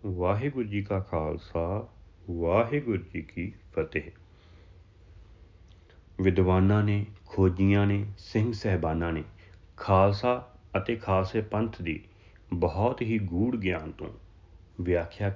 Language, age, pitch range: Punjabi, 40-59, 90-110 Hz